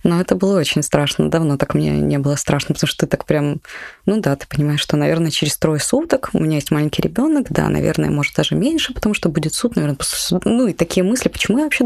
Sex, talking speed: female, 240 wpm